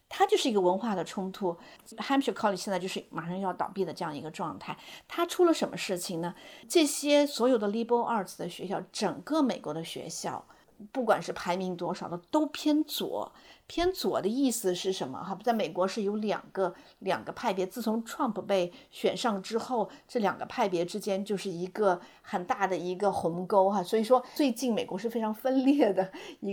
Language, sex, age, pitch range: Chinese, female, 50-69, 185-255 Hz